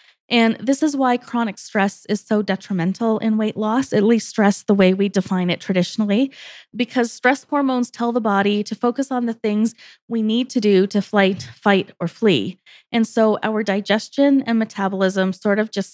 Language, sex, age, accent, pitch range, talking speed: English, female, 20-39, American, 190-235 Hz, 190 wpm